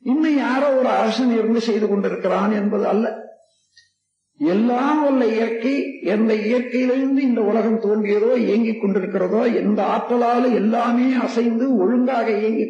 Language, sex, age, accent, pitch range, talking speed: Tamil, male, 50-69, native, 215-265 Hz, 120 wpm